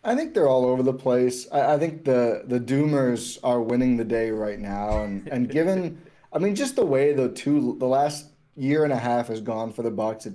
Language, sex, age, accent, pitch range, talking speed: English, male, 20-39, American, 115-135 Hz, 240 wpm